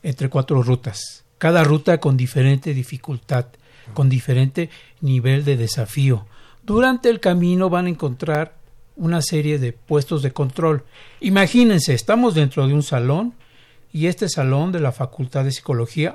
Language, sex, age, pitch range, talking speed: Spanish, male, 60-79, 130-170 Hz, 145 wpm